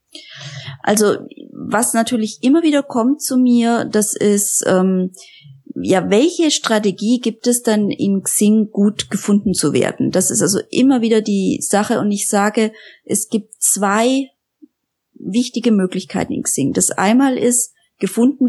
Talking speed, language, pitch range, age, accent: 145 wpm, German, 200-245 Hz, 20-39, German